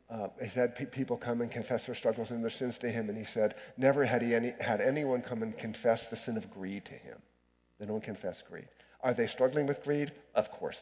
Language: English